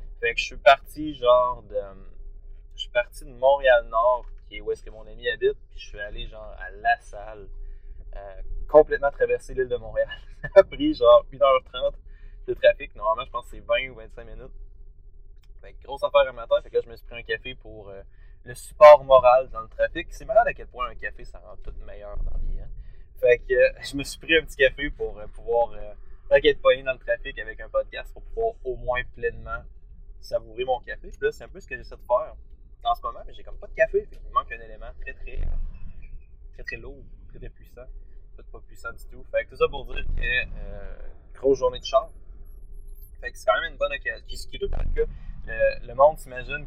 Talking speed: 235 wpm